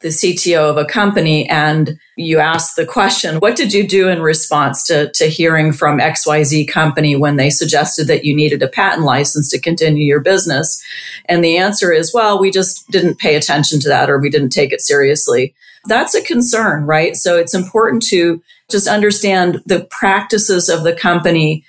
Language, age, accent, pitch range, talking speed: English, 40-59, American, 155-190 Hz, 190 wpm